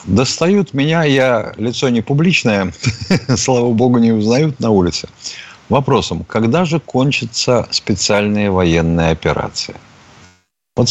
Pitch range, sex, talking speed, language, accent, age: 90-130 Hz, male, 110 wpm, Russian, native, 50-69